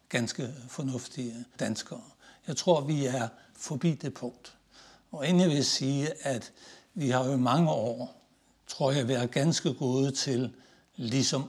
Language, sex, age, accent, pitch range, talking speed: Danish, male, 60-79, native, 120-145 Hz, 145 wpm